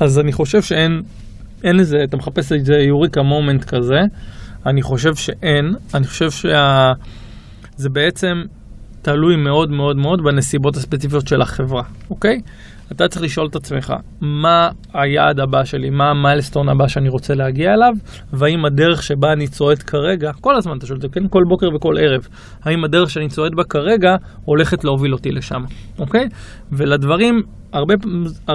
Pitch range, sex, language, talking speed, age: 140-195 Hz, male, Hebrew, 160 wpm, 20-39